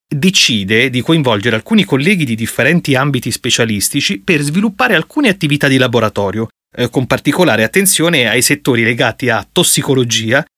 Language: Italian